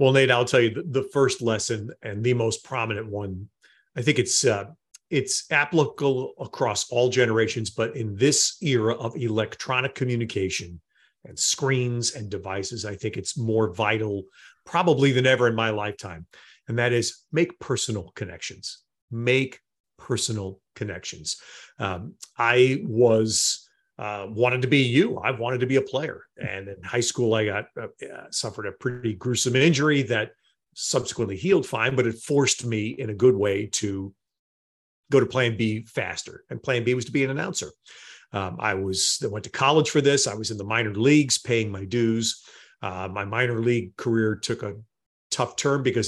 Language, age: English, 40-59